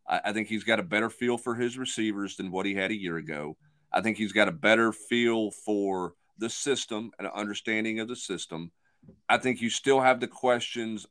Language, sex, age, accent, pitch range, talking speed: English, male, 40-59, American, 100-125 Hz, 210 wpm